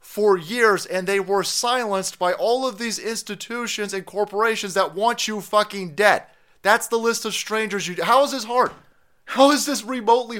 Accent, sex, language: American, male, English